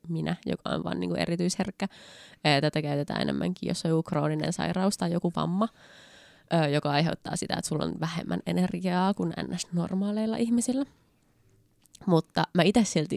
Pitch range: 155-190 Hz